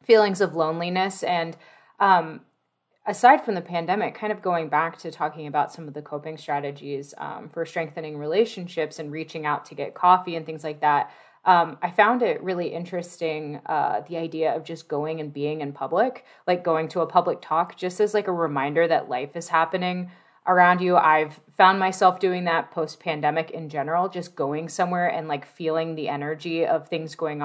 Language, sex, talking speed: English, female, 190 wpm